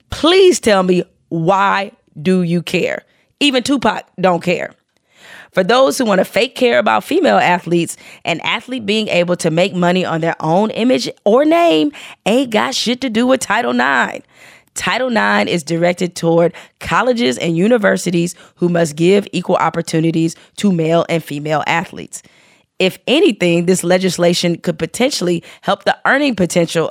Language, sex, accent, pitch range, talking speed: English, female, American, 165-215 Hz, 155 wpm